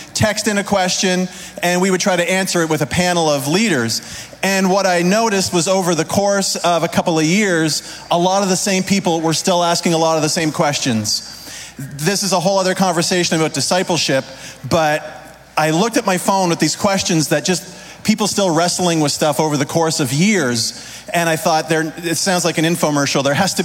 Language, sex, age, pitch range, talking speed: English, male, 40-59, 150-180 Hz, 215 wpm